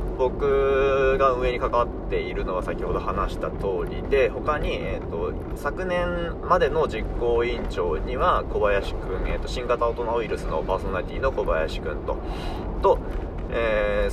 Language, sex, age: Japanese, male, 20-39